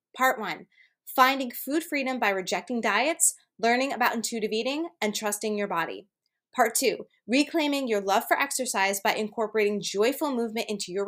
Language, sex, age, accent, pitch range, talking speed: English, female, 20-39, American, 200-265 Hz, 155 wpm